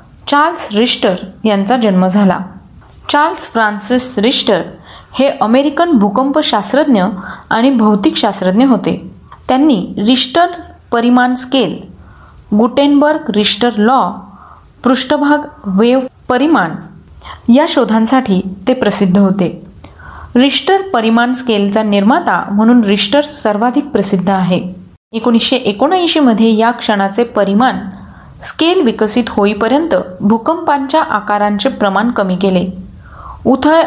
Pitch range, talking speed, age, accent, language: 205-265 Hz, 95 wpm, 30-49, native, Marathi